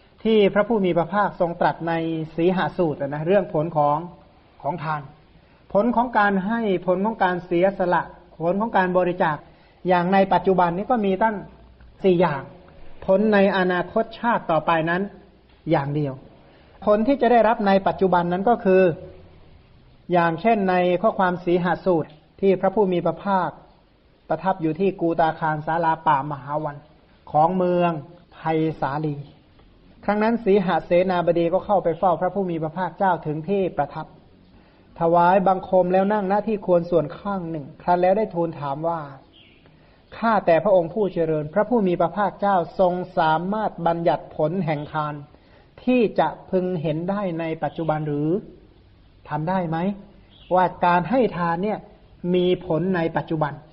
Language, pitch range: Thai, 160-195 Hz